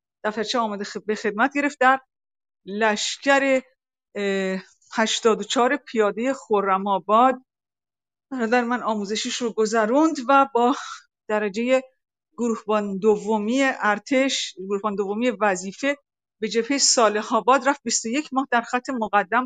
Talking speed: 110 wpm